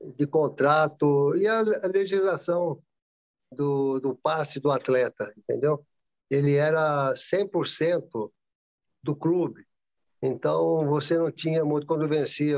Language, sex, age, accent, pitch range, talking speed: Portuguese, male, 50-69, Brazilian, 135-165 Hz, 110 wpm